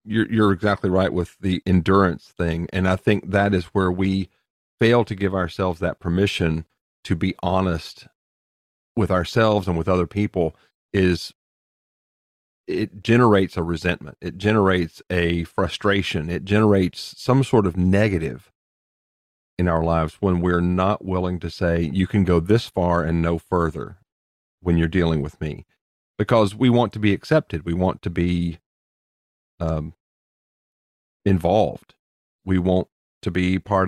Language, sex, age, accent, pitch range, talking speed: English, male, 40-59, American, 85-105 Hz, 150 wpm